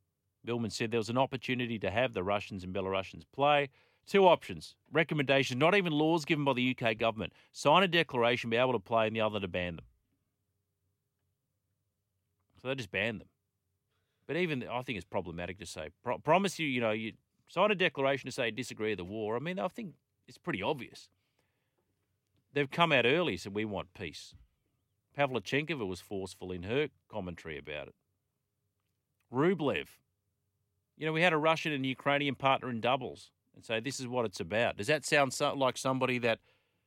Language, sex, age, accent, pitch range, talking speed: English, male, 40-59, Australian, 100-135 Hz, 185 wpm